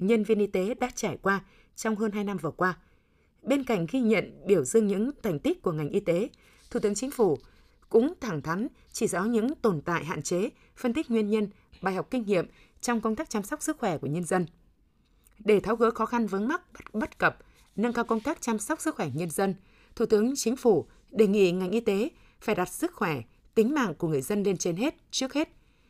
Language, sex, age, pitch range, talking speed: Vietnamese, female, 20-39, 180-230 Hz, 235 wpm